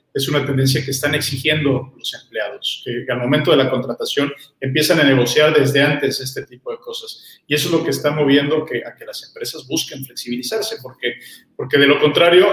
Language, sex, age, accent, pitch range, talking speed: Spanish, male, 40-59, Mexican, 135-160 Hz, 195 wpm